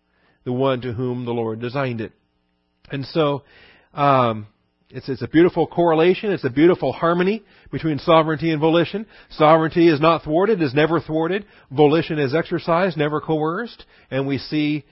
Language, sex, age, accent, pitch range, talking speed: English, male, 40-59, American, 120-170 Hz, 155 wpm